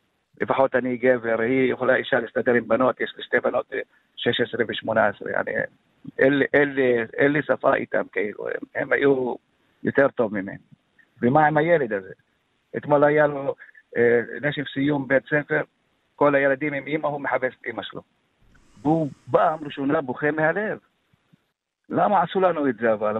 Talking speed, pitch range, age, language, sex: 145 wpm, 135-155 Hz, 50-69, Hebrew, male